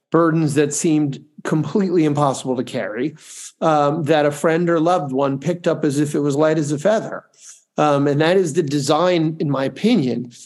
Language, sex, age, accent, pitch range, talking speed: English, male, 50-69, American, 135-165 Hz, 190 wpm